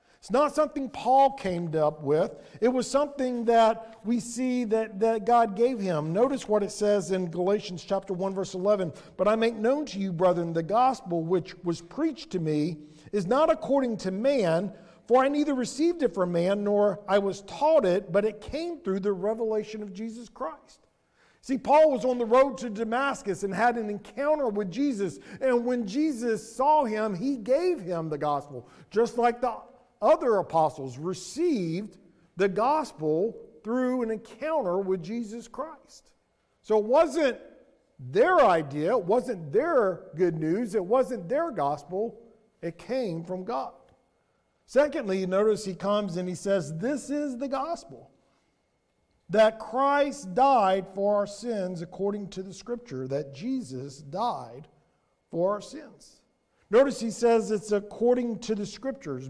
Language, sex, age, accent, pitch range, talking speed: English, male, 50-69, American, 185-255 Hz, 160 wpm